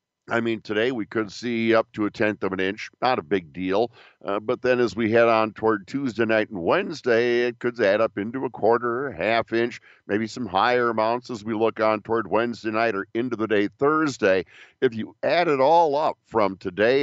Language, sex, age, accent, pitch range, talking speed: English, male, 50-69, American, 105-125 Hz, 220 wpm